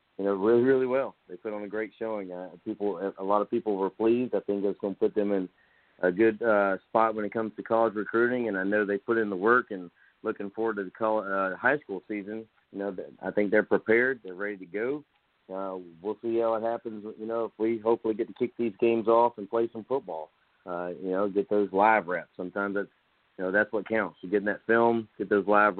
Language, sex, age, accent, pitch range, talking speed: English, male, 40-59, American, 100-115 Hz, 245 wpm